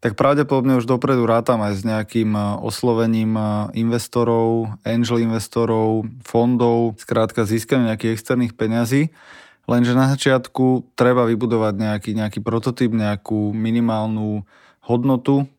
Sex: male